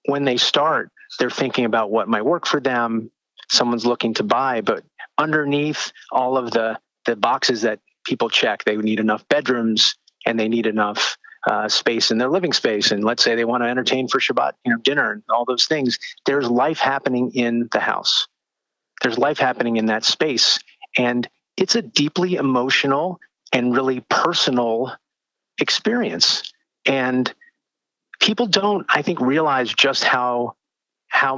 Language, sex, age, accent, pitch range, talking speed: English, male, 40-59, American, 115-135 Hz, 160 wpm